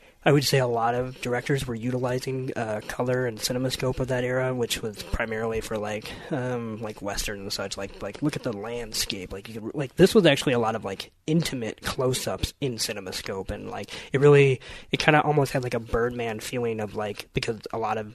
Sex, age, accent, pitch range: male, 20-39, American, 105-130 Hz